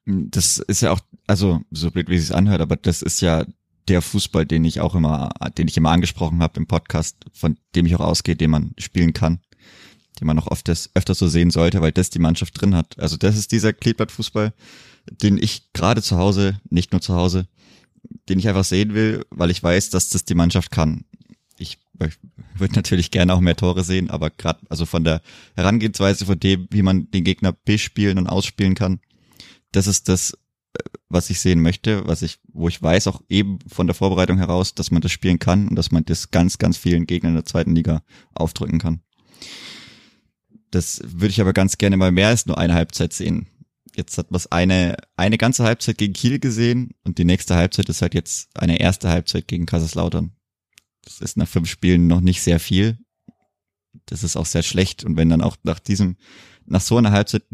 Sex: male